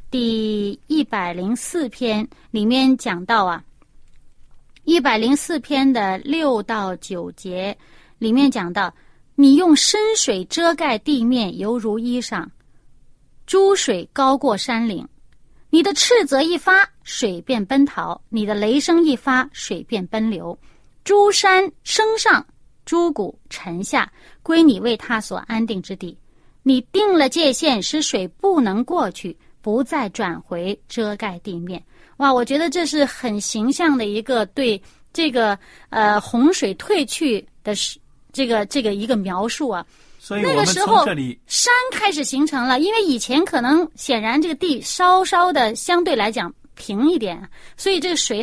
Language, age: Chinese, 30-49